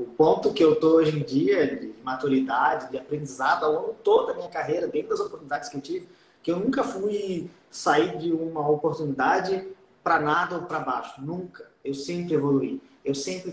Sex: male